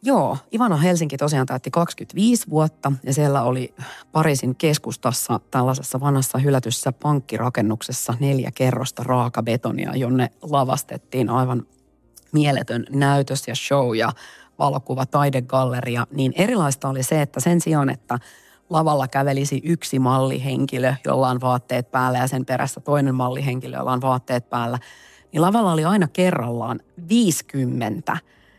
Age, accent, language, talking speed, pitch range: 40-59, native, Finnish, 125 wpm, 130-150 Hz